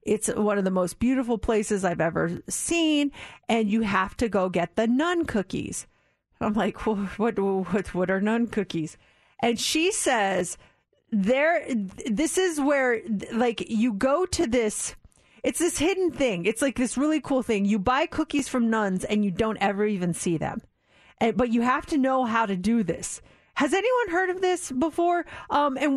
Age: 30-49